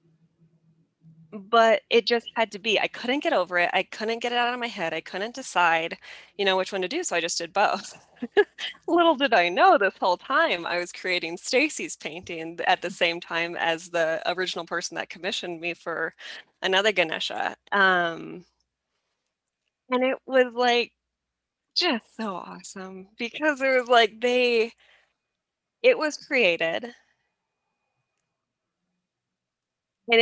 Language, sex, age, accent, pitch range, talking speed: English, female, 20-39, American, 175-230 Hz, 150 wpm